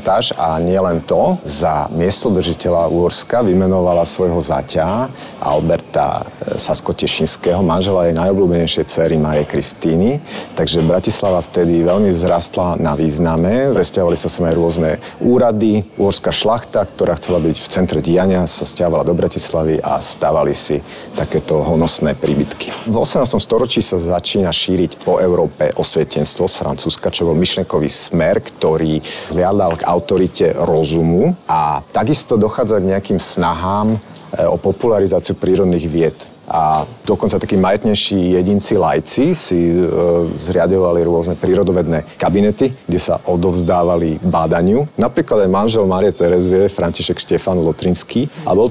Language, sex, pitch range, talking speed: Slovak, male, 80-95 Hz, 125 wpm